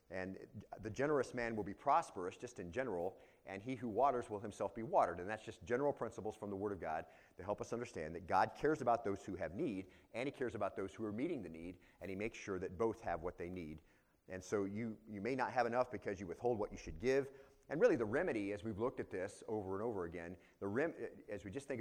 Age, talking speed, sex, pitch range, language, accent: 30-49, 260 wpm, male, 95-120 Hz, English, American